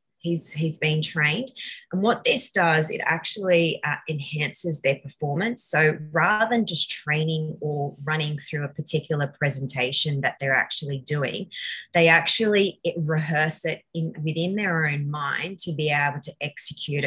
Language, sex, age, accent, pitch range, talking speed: English, female, 20-39, Australian, 145-175 Hz, 155 wpm